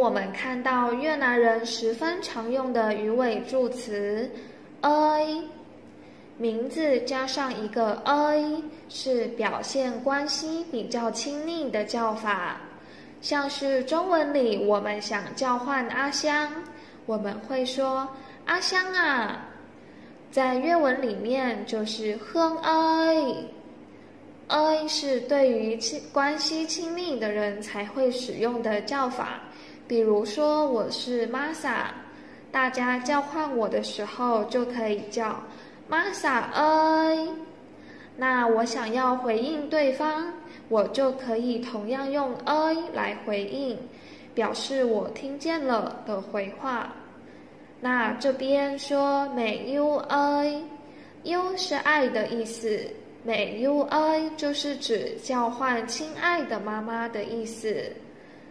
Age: 10-29